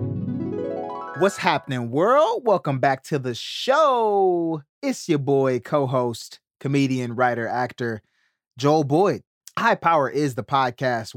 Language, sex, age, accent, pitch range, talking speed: English, male, 30-49, American, 115-140 Hz, 120 wpm